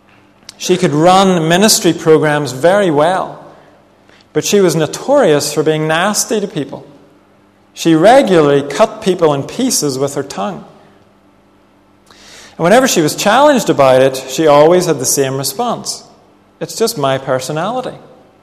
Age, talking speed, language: 40-59, 135 wpm, English